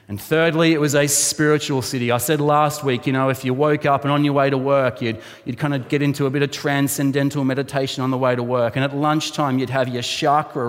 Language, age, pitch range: English, 30-49, 110-150 Hz